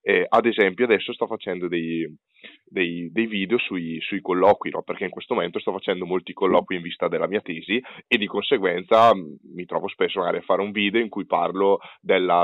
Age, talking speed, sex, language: 10-29, 205 wpm, male, Italian